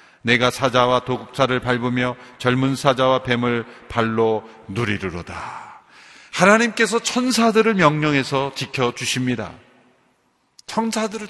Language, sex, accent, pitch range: Korean, male, native, 115-155 Hz